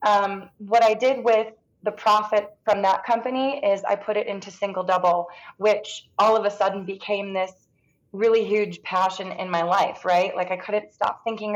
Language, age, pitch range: English, 20-39, 185-215 Hz